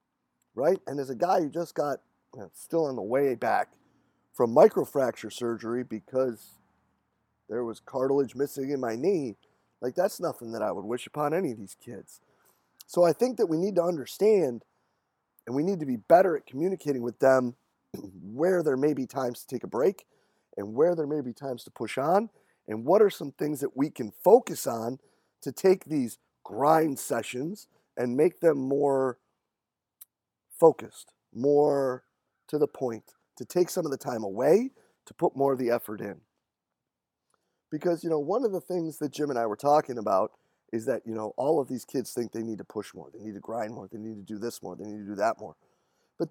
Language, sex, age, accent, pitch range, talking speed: English, male, 30-49, American, 120-165 Hz, 200 wpm